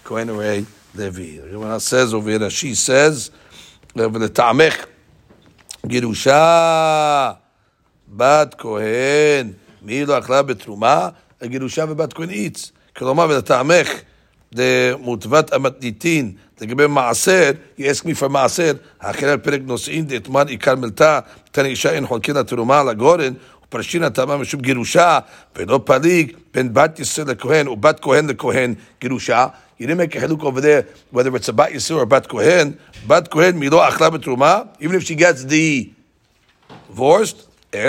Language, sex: English, male